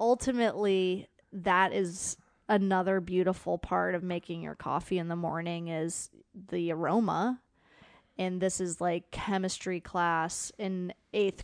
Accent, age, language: American, 20-39, English